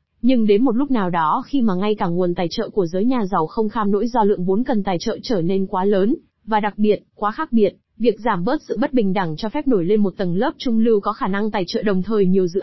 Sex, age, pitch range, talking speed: female, 20-39, 200-250 Hz, 290 wpm